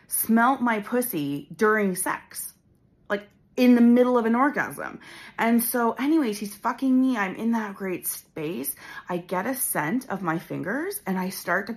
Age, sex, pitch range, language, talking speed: 30-49, female, 160-215 Hz, English, 175 wpm